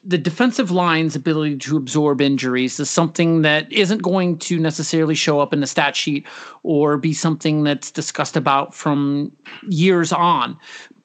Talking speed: 160 wpm